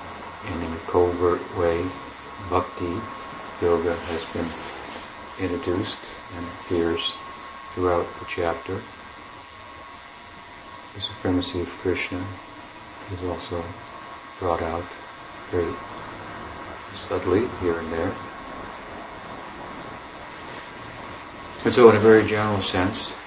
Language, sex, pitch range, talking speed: English, male, 85-90 Hz, 85 wpm